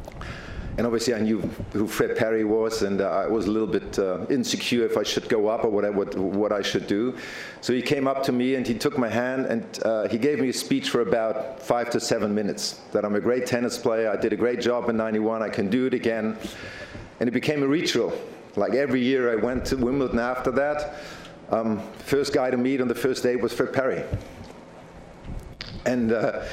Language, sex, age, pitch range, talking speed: English, male, 50-69, 110-130 Hz, 220 wpm